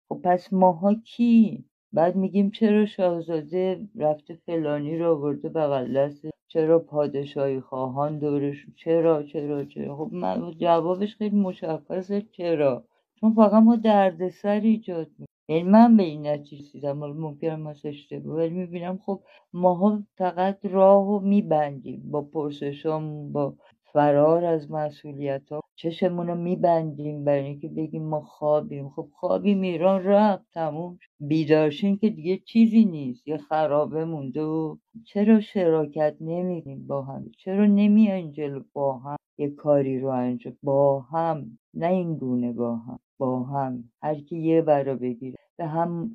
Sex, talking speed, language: female, 140 wpm, Persian